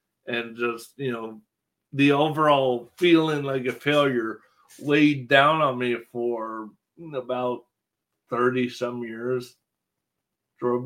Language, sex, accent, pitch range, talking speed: English, male, American, 115-145 Hz, 110 wpm